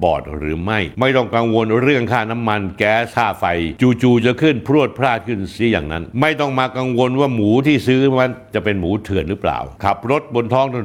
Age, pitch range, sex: 60-79, 110-150 Hz, male